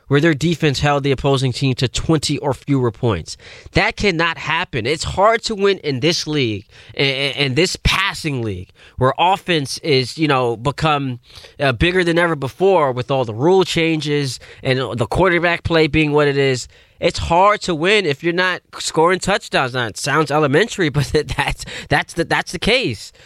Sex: male